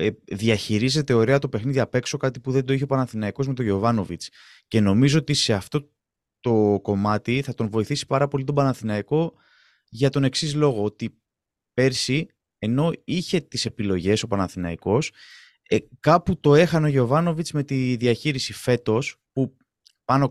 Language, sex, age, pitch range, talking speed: Greek, male, 20-39, 115-150 Hz, 155 wpm